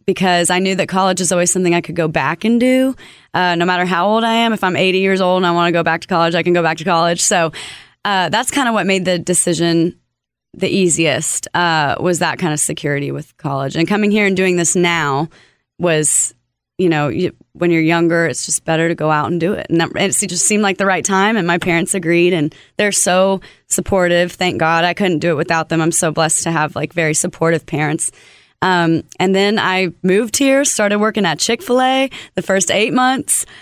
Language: English